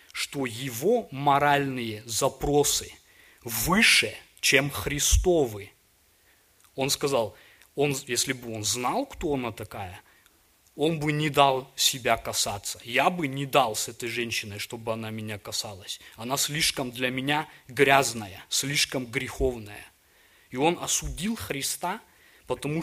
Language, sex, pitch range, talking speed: Russian, male, 115-145 Hz, 120 wpm